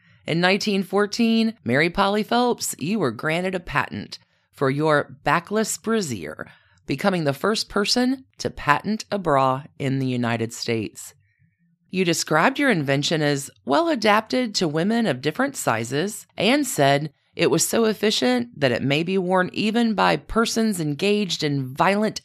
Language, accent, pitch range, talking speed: English, American, 135-205 Hz, 145 wpm